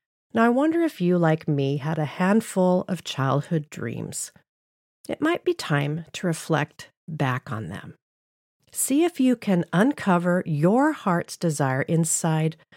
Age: 40-59